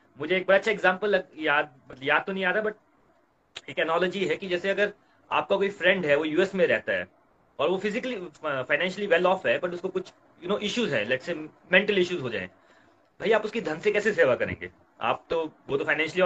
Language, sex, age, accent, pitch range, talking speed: Hindi, male, 30-49, native, 150-195 Hz, 135 wpm